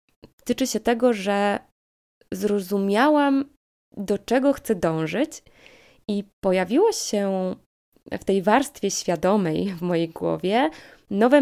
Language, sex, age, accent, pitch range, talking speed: Polish, female, 20-39, native, 185-255 Hz, 105 wpm